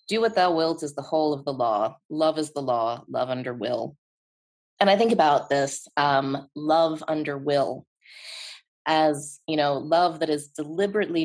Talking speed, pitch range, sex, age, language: 175 wpm, 135-165 Hz, female, 20-39, English